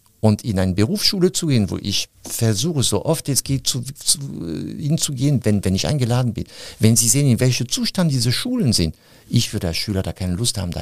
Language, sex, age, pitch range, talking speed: German, male, 50-69, 100-140 Hz, 205 wpm